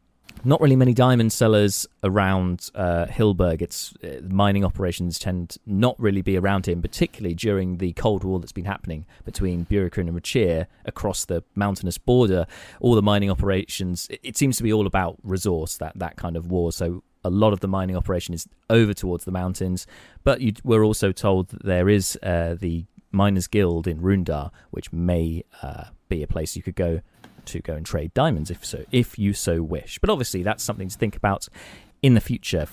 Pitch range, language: 85-105 Hz, English